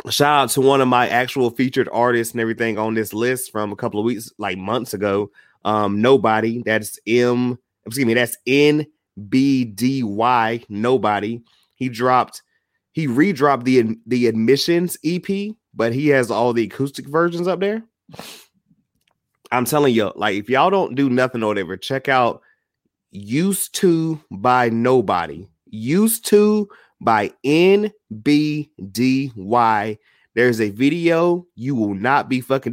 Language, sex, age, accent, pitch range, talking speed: English, male, 30-49, American, 115-140 Hz, 150 wpm